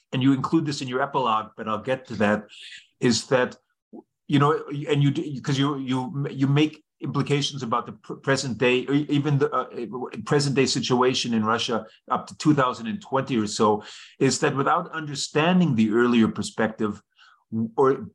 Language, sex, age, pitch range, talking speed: English, male, 30-49, 115-145 Hz, 170 wpm